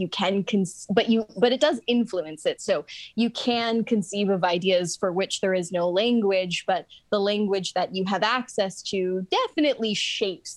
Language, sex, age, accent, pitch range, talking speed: English, female, 10-29, American, 180-215 Hz, 180 wpm